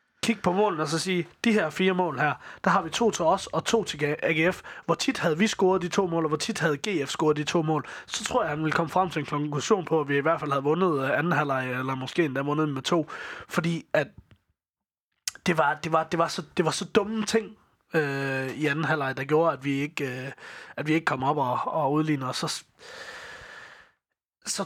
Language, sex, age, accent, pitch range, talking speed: Danish, male, 20-39, native, 140-175 Hz, 245 wpm